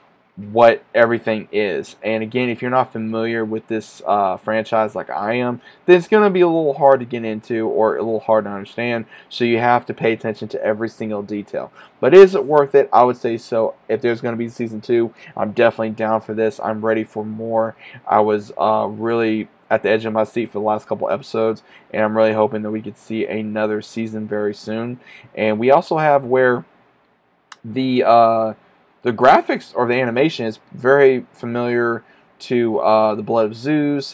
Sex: male